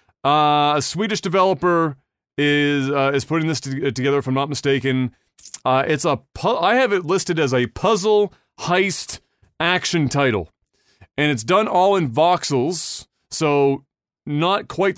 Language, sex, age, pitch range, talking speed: English, male, 30-49, 130-160 Hz, 150 wpm